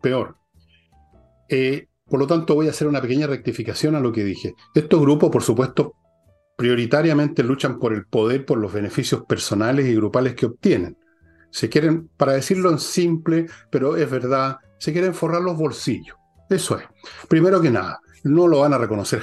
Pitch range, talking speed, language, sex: 115-160 Hz, 175 wpm, Spanish, male